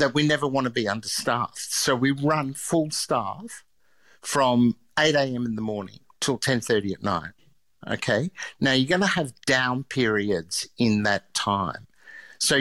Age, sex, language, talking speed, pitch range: 60-79, male, English, 160 wpm, 110-140 Hz